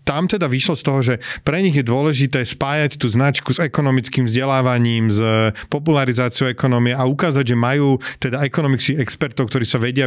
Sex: male